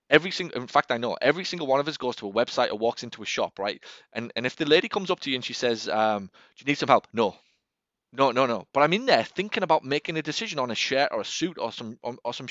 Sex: male